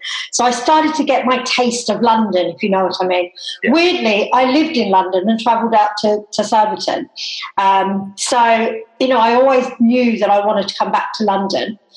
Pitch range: 225-275 Hz